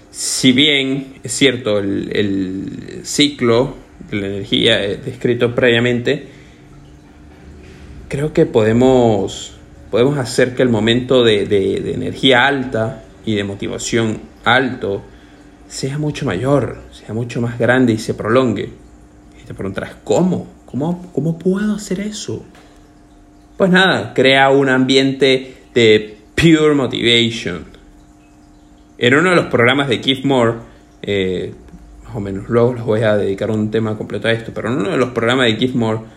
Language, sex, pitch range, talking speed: Spanish, male, 105-140 Hz, 145 wpm